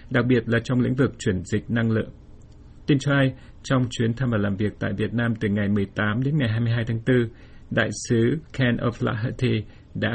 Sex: male